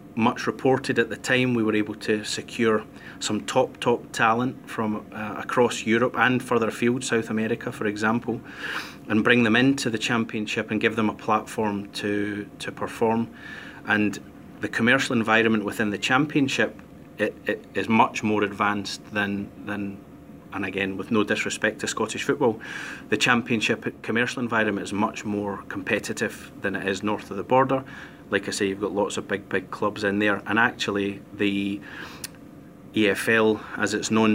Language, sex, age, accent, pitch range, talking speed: English, male, 30-49, British, 105-120 Hz, 170 wpm